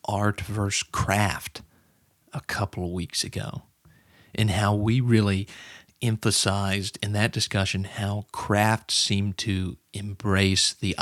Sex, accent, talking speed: male, American, 120 wpm